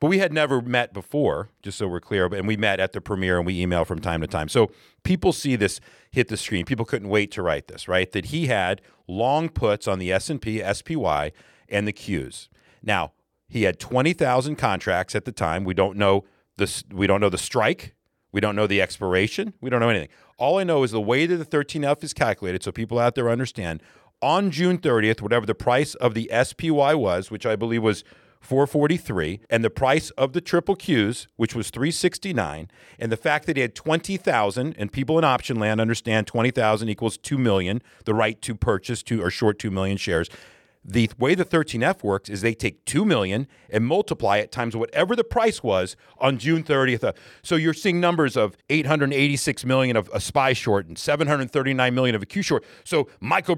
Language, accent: English, American